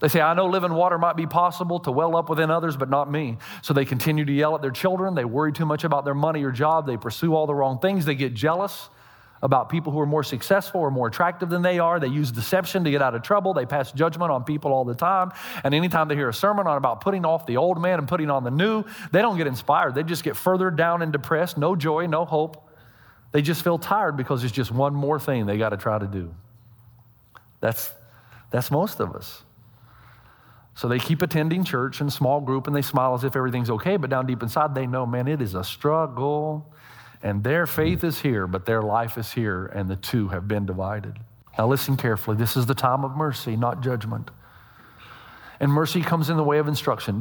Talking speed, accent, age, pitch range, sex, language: 235 wpm, American, 40-59, 120-160 Hz, male, English